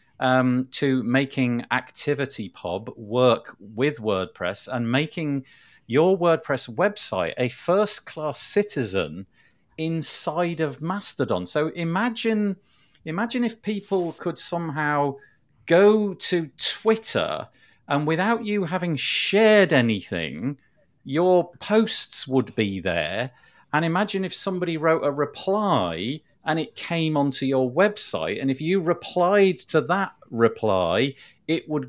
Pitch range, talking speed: 130-190 Hz, 115 wpm